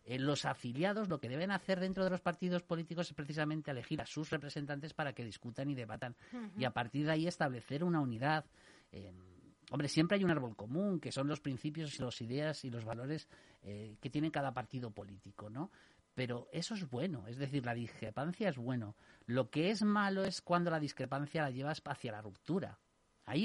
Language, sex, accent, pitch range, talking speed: Spanish, male, Spanish, 120-160 Hz, 195 wpm